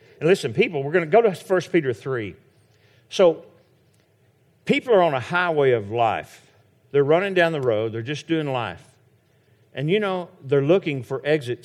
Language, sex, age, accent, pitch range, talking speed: English, male, 50-69, American, 130-195 Hz, 180 wpm